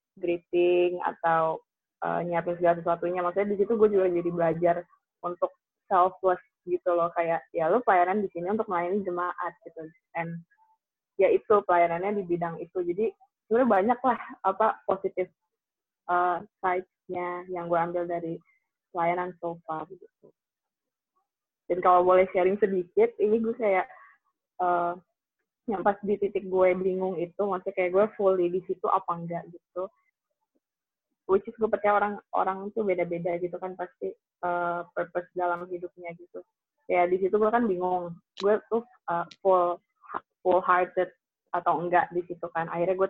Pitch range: 175-210 Hz